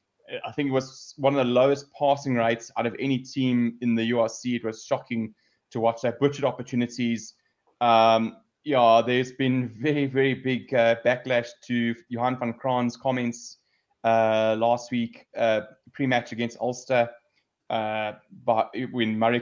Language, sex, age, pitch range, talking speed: English, male, 20-39, 115-130 Hz, 150 wpm